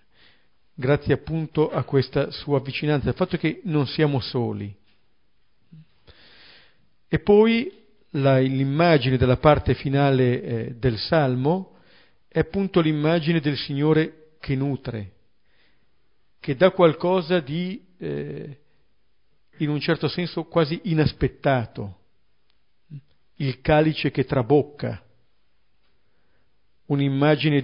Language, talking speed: Italian, 100 wpm